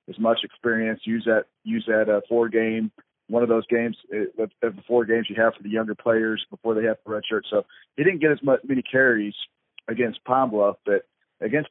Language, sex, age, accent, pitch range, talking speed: English, male, 40-59, American, 105-120 Hz, 230 wpm